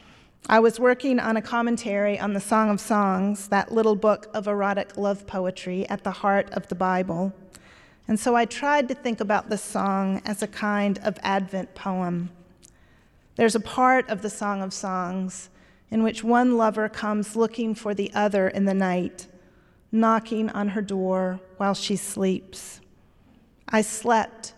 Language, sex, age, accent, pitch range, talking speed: English, female, 40-59, American, 195-225 Hz, 165 wpm